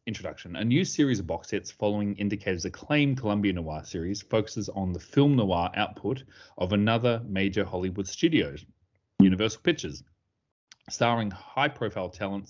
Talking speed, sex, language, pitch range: 145 wpm, male, English, 95-120 Hz